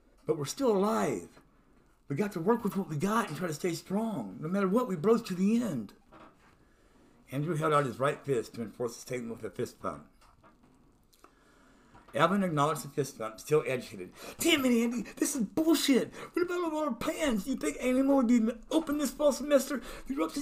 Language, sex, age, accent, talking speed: English, male, 60-79, American, 195 wpm